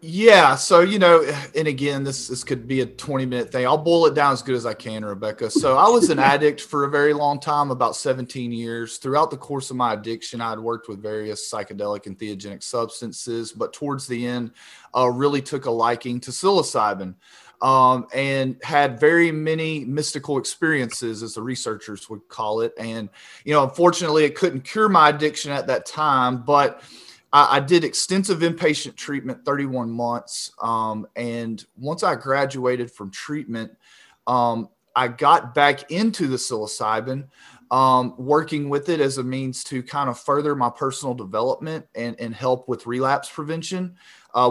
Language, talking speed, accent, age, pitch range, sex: English, 175 wpm, American, 30-49, 120-150 Hz, male